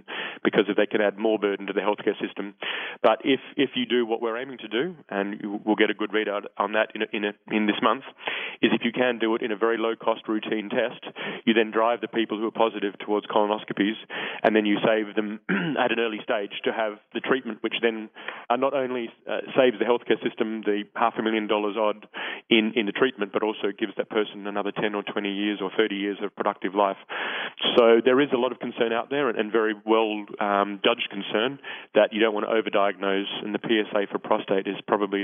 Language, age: English, 30-49